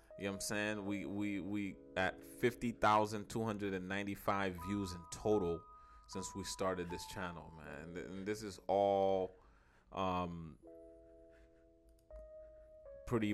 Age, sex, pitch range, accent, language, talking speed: 30-49, male, 90-115 Hz, American, English, 110 wpm